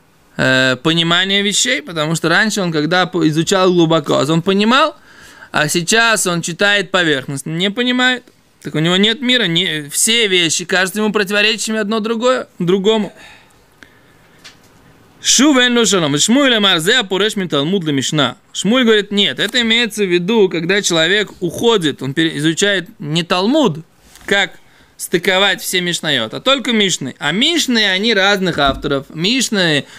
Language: Russian